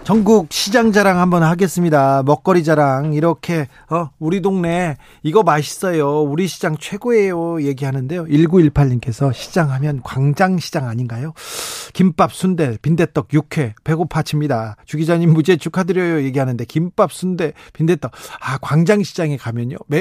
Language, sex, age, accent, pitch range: Korean, male, 40-59, native, 135-180 Hz